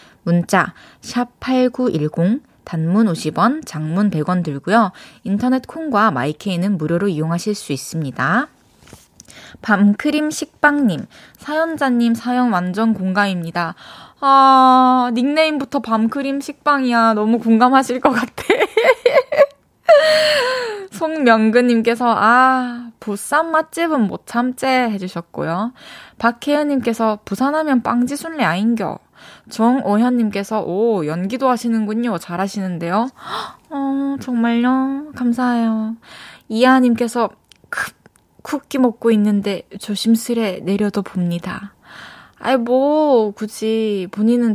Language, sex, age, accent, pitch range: Korean, female, 20-39, native, 190-260 Hz